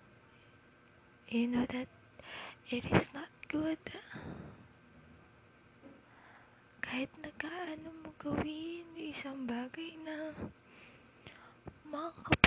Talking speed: 65 wpm